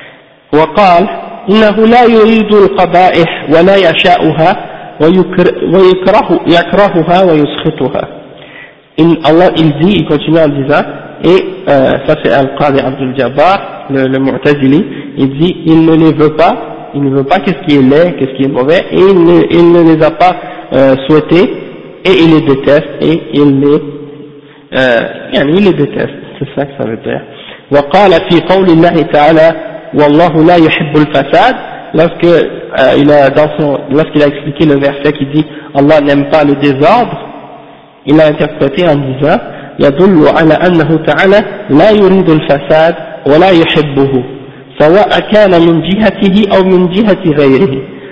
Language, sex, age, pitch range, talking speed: French, male, 50-69, 145-175 Hz, 100 wpm